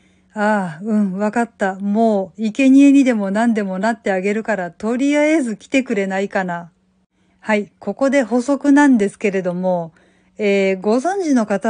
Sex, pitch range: female, 190-245 Hz